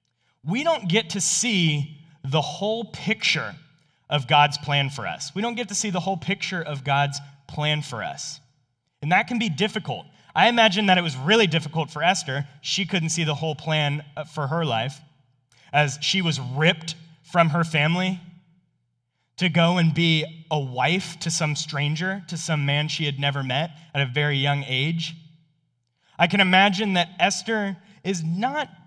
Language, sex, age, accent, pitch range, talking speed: English, male, 20-39, American, 140-175 Hz, 175 wpm